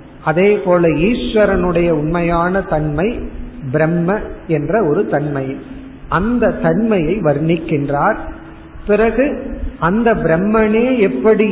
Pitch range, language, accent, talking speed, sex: 160-215 Hz, Tamil, native, 85 wpm, male